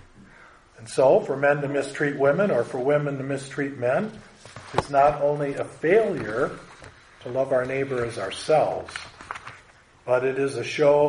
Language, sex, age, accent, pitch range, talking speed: English, male, 40-59, American, 120-150 Hz, 155 wpm